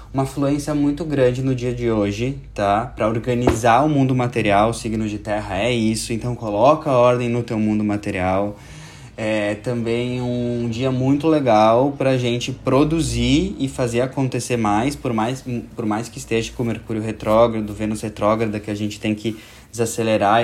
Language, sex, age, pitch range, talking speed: Portuguese, male, 20-39, 110-130 Hz, 175 wpm